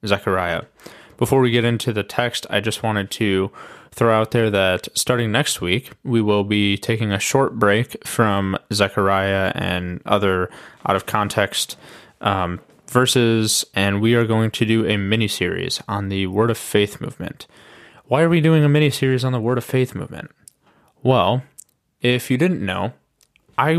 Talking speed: 170 wpm